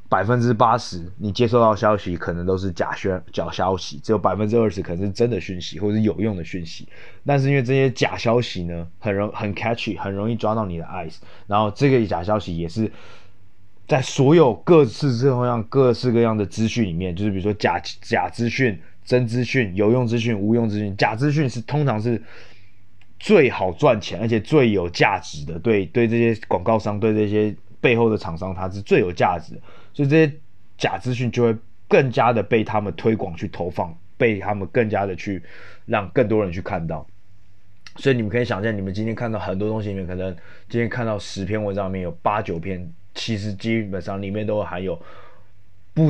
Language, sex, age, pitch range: Chinese, male, 20-39, 95-115 Hz